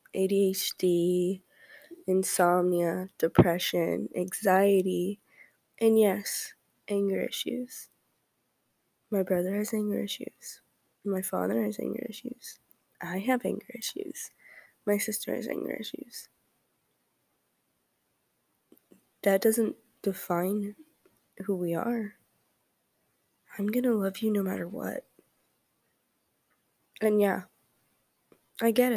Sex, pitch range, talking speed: female, 190-230 Hz, 95 wpm